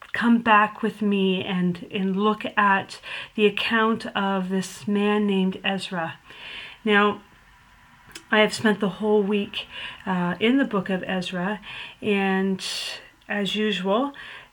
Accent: American